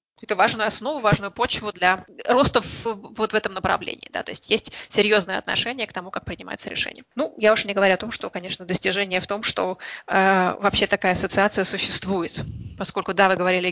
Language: English